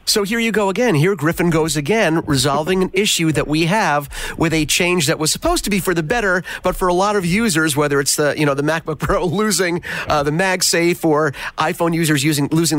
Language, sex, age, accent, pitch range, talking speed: English, male, 40-59, American, 145-180 Hz, 230 wpm